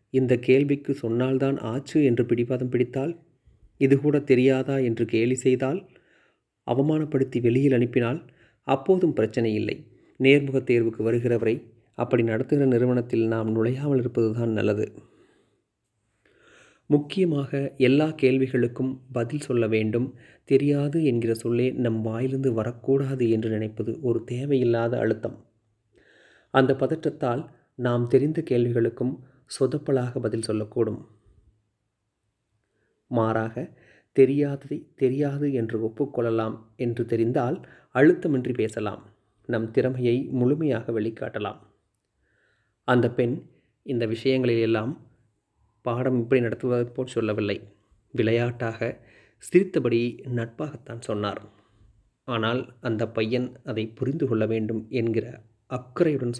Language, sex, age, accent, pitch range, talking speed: Tamil, male, 30-49, native, 115-135 Hz, 90 wpm